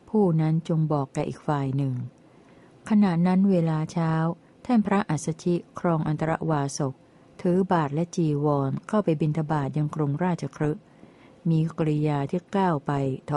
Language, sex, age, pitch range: Thai, female, 60-79, 150-175 Hz